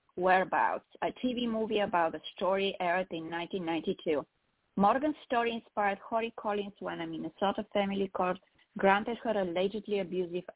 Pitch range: 185-220 Hz